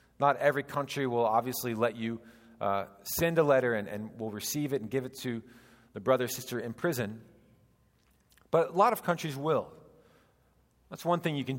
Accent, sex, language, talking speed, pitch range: American, male, English, 190 wpm, 120-175 Hz